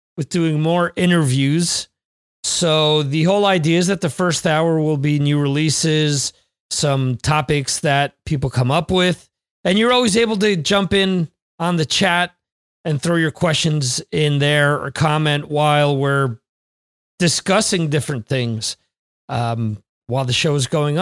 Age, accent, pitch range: 40-59, American, 140-185 Hz